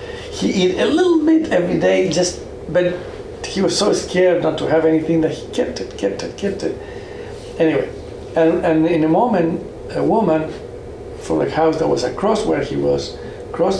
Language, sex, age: English, male, 60-79